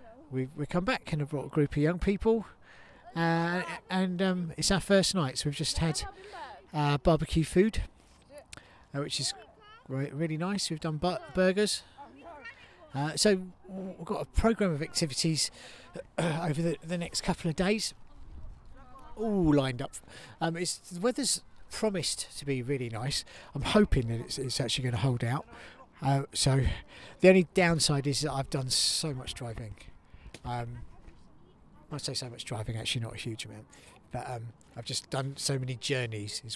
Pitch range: 130-175 Hz